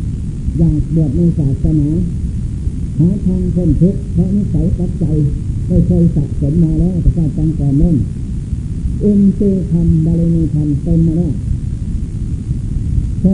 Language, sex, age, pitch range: Thai, male, 60-79, 105-170 Hz